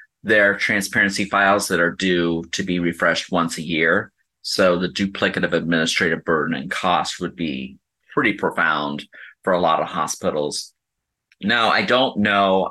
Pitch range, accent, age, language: 85-95 Hz, American, 30-49, English